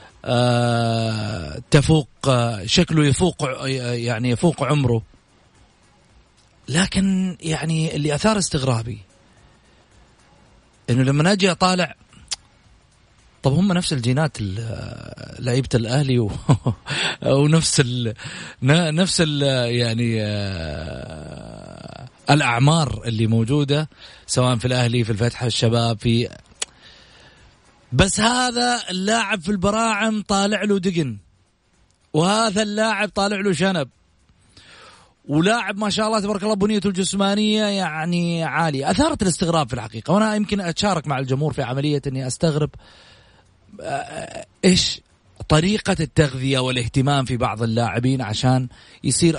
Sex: male